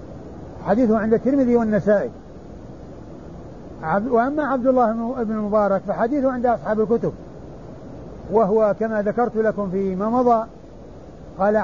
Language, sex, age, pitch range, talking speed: Arabic, male, 60-79, 195-240 Hz, 105 wpm